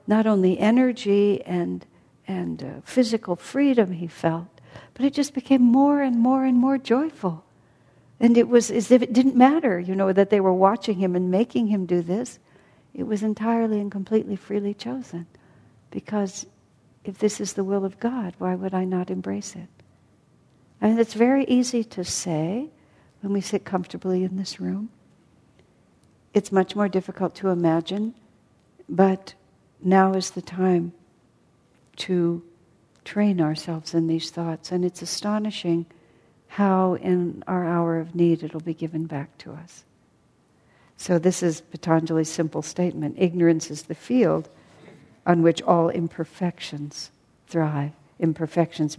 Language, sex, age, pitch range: English, female, 60-79, 160-205 Hz